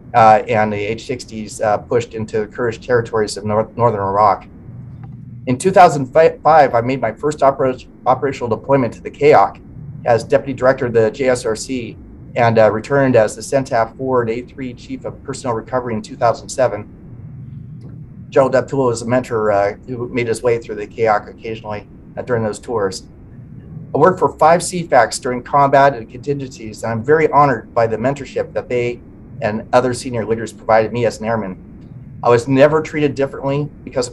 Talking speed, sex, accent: 165 wpm, male, American